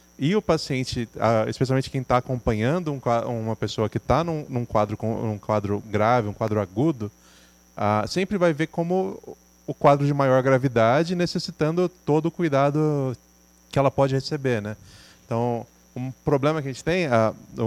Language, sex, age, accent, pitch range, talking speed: Portuguese, male, 20-39, Brazilian, 105-135 Hz, 170 wpm